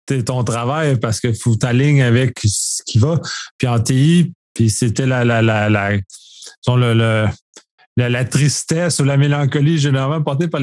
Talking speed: 175 wpm